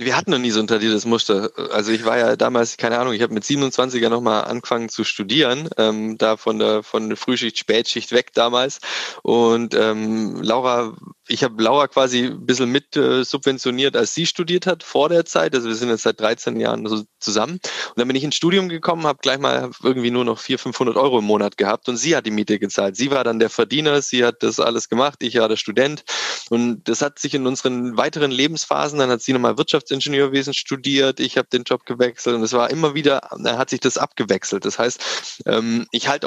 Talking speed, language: 220 wpm, German